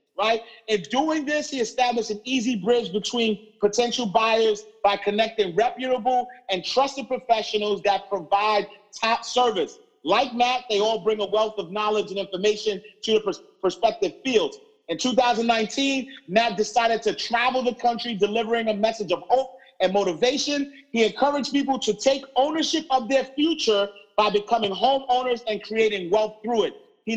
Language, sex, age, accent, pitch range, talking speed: English, male, 40-59, American, 215-270 Hz, 155 wpm